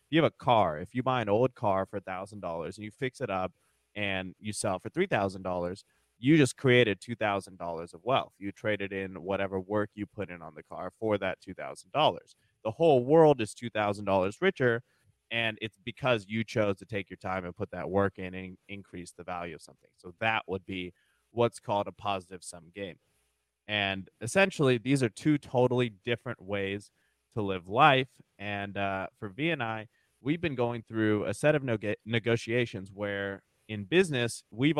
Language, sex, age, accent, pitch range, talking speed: English, male, 20-39, American, 95-120 Hz, 200 wpm